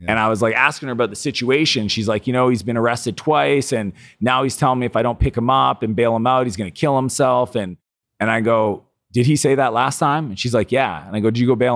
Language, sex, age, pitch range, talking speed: English, male, 30-49, 100-135 Hz, 295 wpm